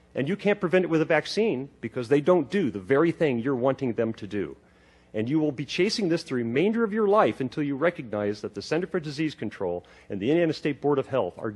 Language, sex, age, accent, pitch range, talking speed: English, male, 40-59, American, 110-145 Hz, 250 wpm